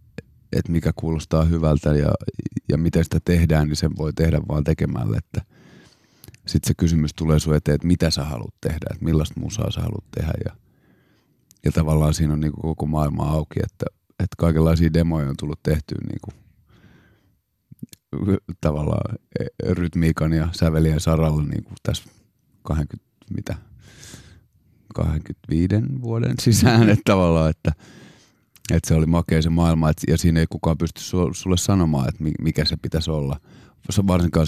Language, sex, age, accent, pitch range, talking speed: Finnish, male, 30-49, native, 80-90 Hz, 140 wpm